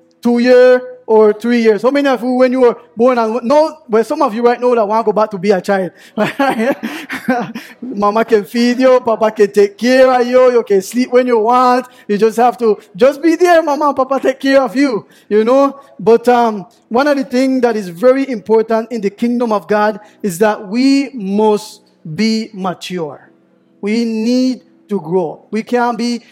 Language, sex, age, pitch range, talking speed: English, male, 20-39, 210-255 Hz, 205 wpm